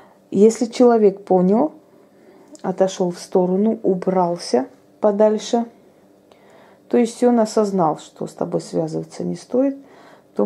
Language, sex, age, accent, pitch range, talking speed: Russian, female, 30-49, native, 170-215 Hz, 110 wpm